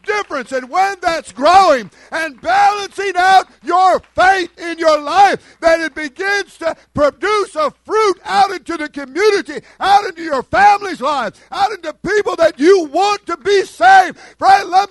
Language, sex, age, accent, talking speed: English, male, 50-69, American, 160 wpm